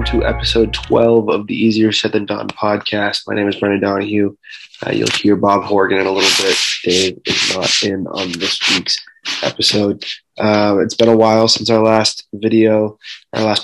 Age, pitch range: 20-39, 100-110 Hz